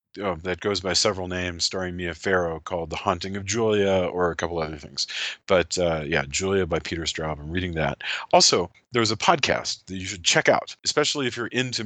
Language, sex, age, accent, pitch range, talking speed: English, male, 40-59, American, 90-120 Hz, 210 wpm